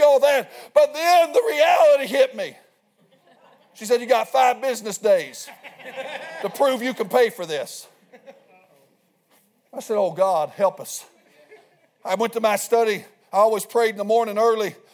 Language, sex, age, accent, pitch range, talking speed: English, male, 50-69, American, 230-280 Hz, 160 wpm